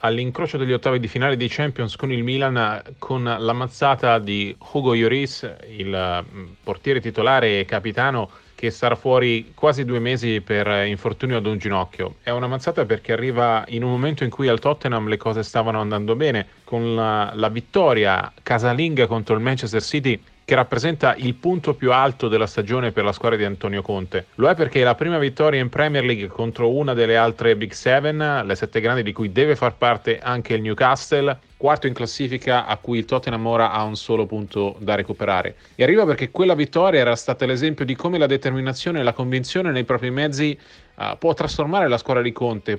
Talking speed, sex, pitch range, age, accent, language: 190 wpm, male, 110-135 Hz, 40-59, native, Italian